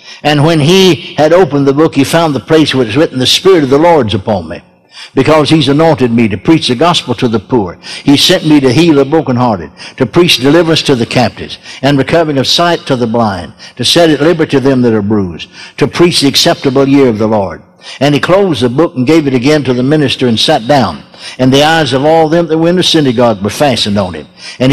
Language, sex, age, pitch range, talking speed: English, male, 60-79, 130-165 Hz, 240 wpm